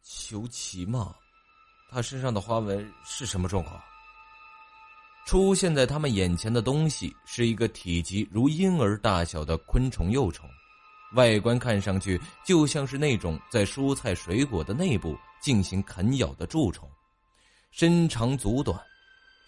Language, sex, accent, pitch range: Chinese, male, native, 95-140 Hz